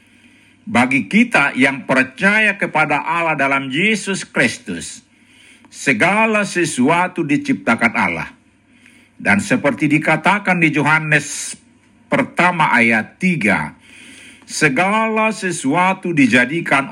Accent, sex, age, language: native, male, 50-69, Indonesian